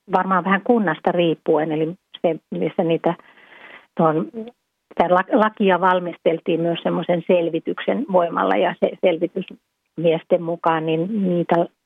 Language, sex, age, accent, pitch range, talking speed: Finnish, female, 40-59, native, 165-200 Hz, 95 wpm